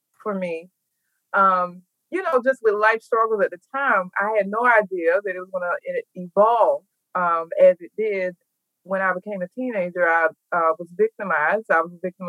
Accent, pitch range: American, 180-240 Hz